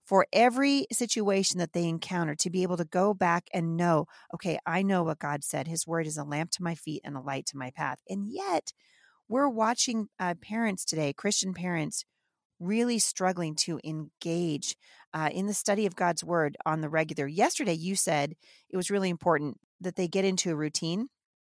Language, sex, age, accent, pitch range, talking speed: English, female, 40-59, American, 155-200 Hz, 195 wpm